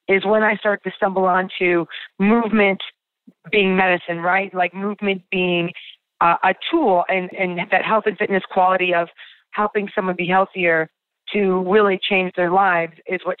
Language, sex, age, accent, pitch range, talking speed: English, female, 30-49, American, 175-210 Hz, 160 wpm